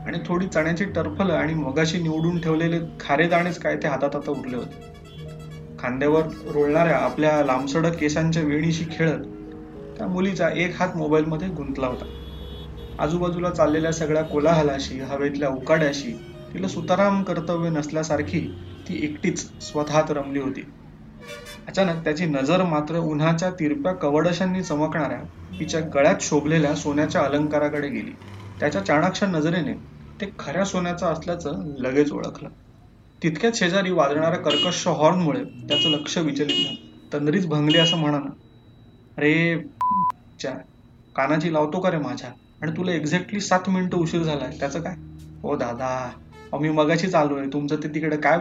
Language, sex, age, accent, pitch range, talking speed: Marathi, male, 30-49, native, 135-165 Hz, 130 wpm